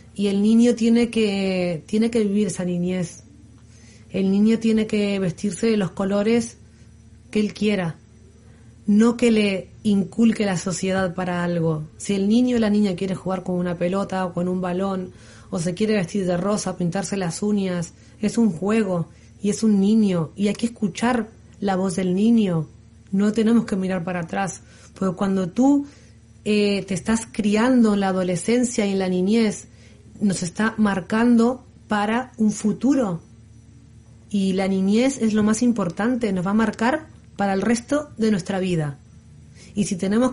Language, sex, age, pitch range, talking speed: Spanish, female, 30-49, 180-225 Hz, 170 wpm